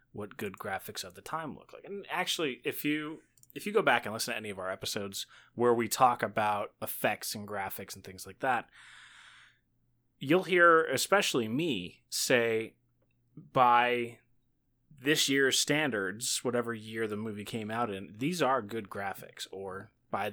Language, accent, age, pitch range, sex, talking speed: English, American, 20-39, 110-135 Hz, male, 165 wpm